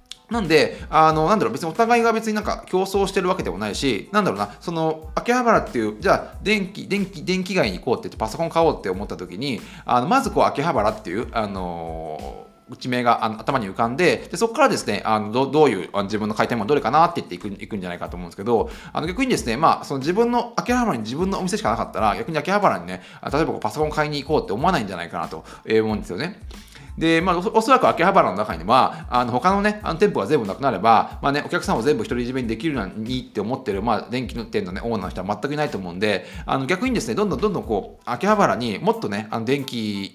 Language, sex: Japanese, male